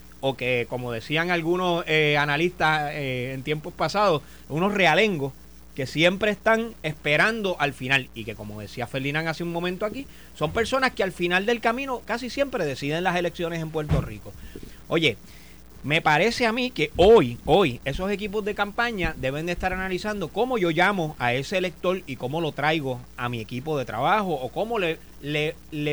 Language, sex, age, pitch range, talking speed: Spanish, male, 30-49, 140-210 Hz, 185 wpm